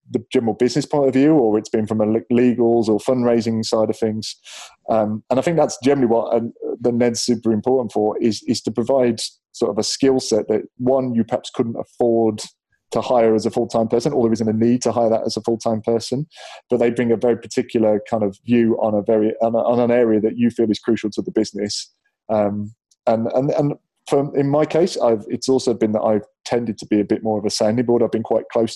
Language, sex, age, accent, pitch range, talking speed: English, male, 20-39, British, 110-125 Hz, 240 wpm